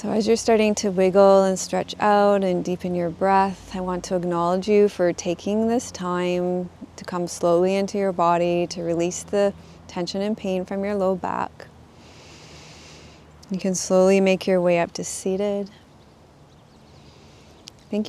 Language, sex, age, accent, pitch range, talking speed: English, female, 30-49, American, 175-200 Hz, 160 wpm